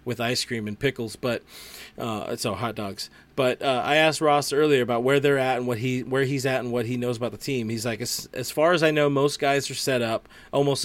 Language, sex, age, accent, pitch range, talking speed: English, male, 30-49, American, 115-135 Hz, 260 wpm